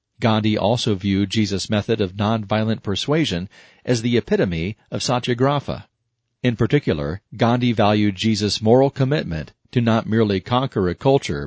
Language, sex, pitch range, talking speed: English, male, 105-125 Hz, 135 wpm